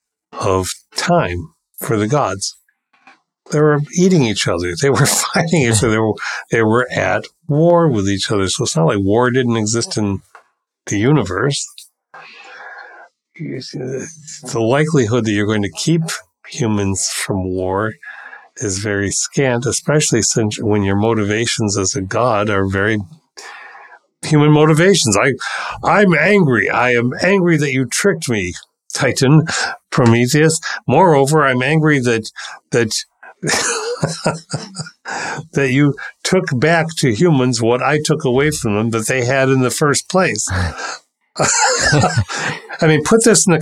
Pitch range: 110-160 Hz